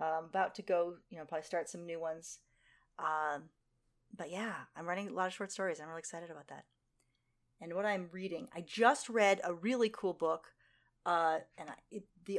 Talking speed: 190 wpm